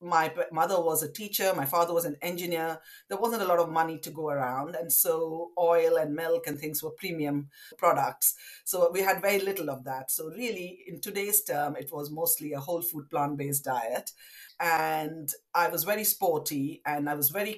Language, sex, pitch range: English, female, 145-180 Hz